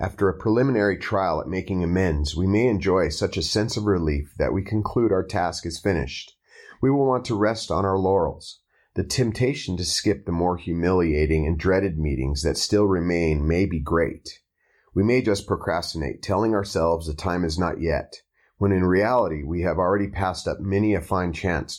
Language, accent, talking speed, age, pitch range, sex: English, American, 190 wpm, 30-49, 80-100 Hz, male